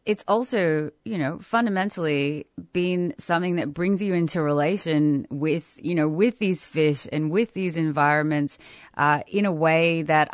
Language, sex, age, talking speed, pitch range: English, female, 20-39, 155 wpm, 150-185 Hz